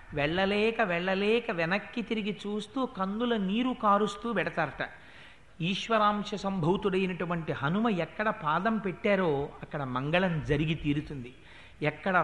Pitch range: 155-205 Hz